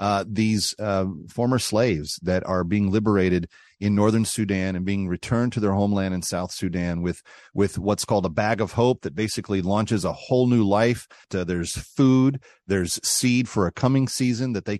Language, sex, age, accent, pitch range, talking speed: English, male, 40-59, American, 100-125 Hz, 190 wpm